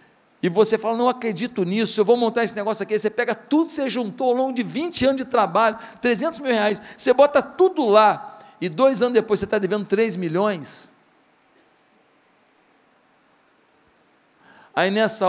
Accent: Brazilian